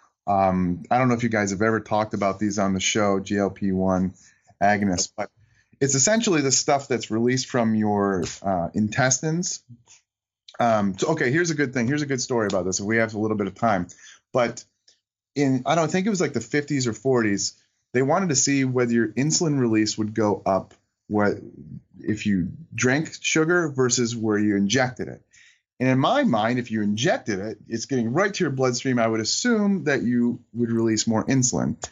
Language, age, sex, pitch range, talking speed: English, 30-49, male, 105-130 Hz, 200 wpm